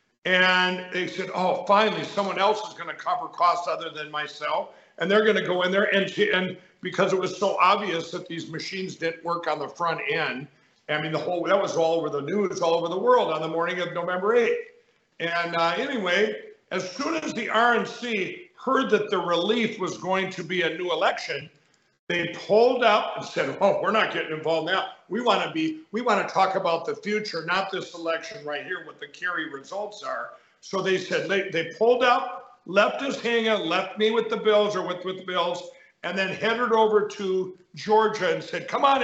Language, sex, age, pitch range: English, male, 50-69, 175-225 Hz